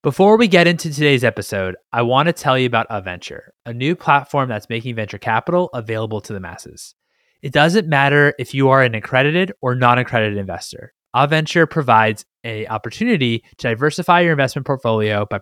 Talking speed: 175 wpm